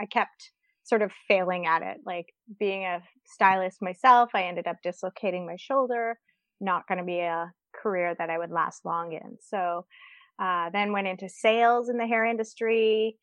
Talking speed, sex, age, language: 180 wpm, female, 20-39, English